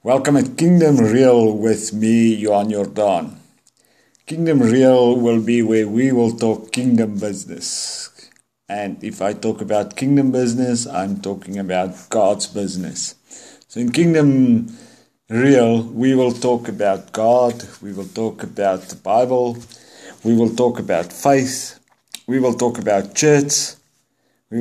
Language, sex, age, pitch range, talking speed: English, male, 50-69, 115-145 Hz, 135 wpm